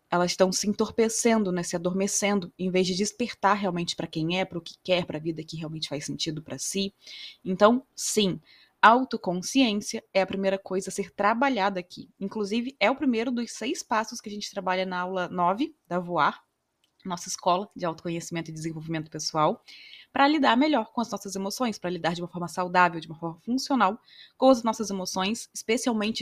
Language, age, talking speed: Portuguese, 20-39, 190 wpm